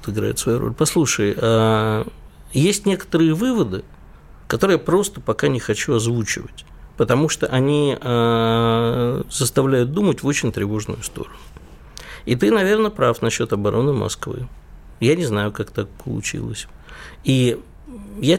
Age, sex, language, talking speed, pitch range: 50-69, male, Russian, 125 wpm, 105-135 Hz